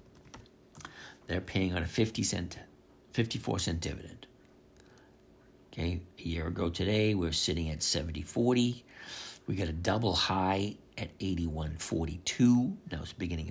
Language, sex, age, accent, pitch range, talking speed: English, male, 60-79, American, 80-100 Hz, 135 wpm